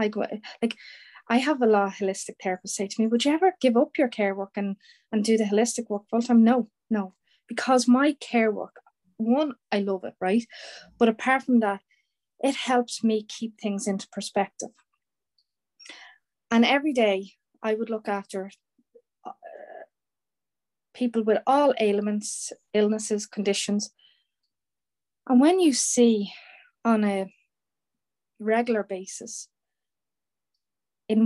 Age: 30-49